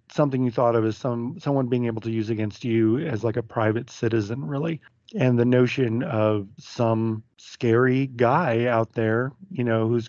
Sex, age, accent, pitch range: male, 40-59, American, 115-140 Hz